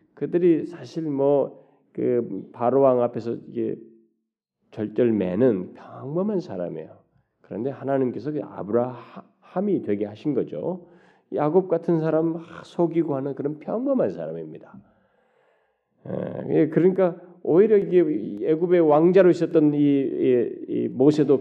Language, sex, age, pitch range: Korean, male, 40-59, 135-200 Hz